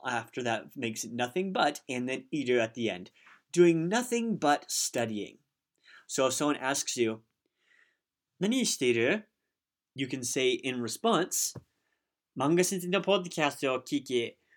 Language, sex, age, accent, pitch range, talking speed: English, male, 30-49, American, 125-175 Hz, 125 wpm